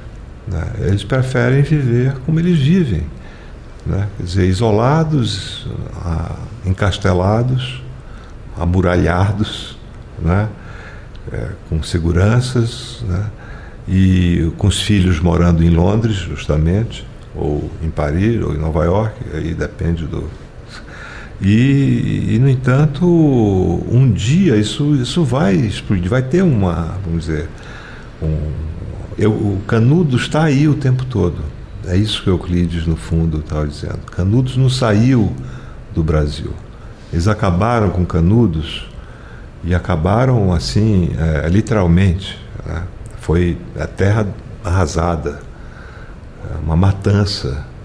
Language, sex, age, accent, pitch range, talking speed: Portuguese, male, 60-79, Brazilian, 85-115 Hz, 110 wpm